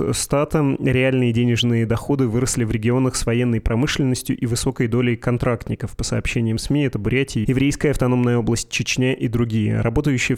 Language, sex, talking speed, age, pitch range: Russian, male, 150 wpm, 20-39, 115-130 Hz